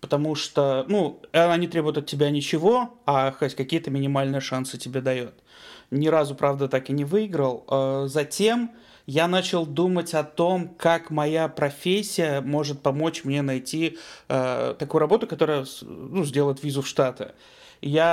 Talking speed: 150 wpm